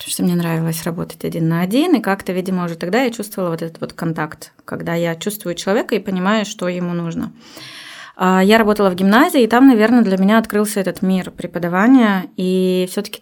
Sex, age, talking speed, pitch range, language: female, 20-39, 195 wpm, 180-215 Hz, Russian